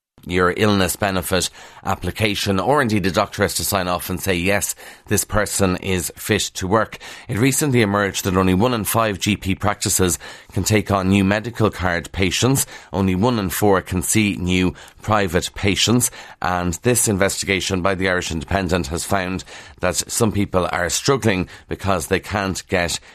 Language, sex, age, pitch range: English, male, 30-49, 90-110 Hz